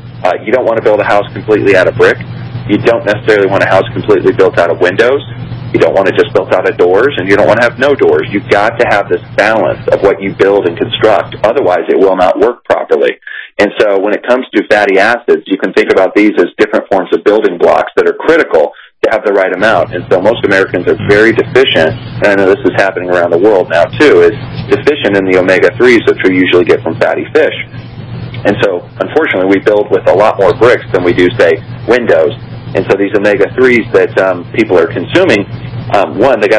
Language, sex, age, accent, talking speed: English, male, 30-49, American, 235 wpm